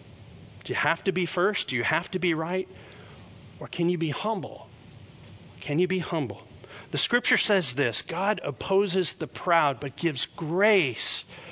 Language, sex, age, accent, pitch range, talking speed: English, male, 40-59, American, 125-175 Hz, 165 wpm